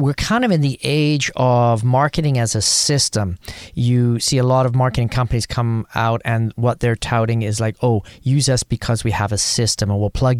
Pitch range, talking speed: 110-140 Hz, 215 wpm